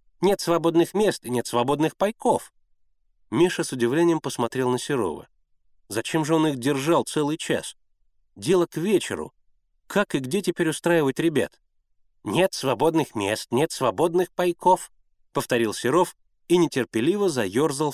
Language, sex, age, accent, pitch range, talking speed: Russian, male, 30-49, native, 120-170 Hz, 135 wpm